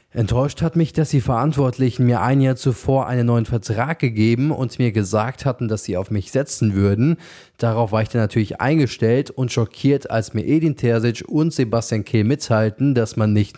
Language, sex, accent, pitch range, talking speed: German, male, German, 110-135 Hz, 190 wpm